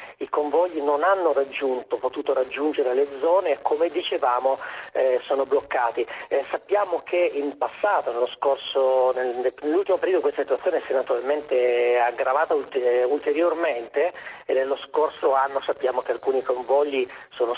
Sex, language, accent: male, Italian, native